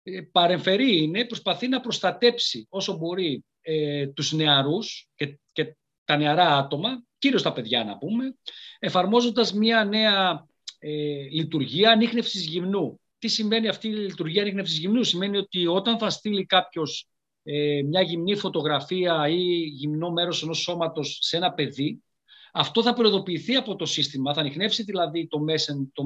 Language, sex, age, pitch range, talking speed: Greek, male, 40-59, 150-205 Hz, 145 wpm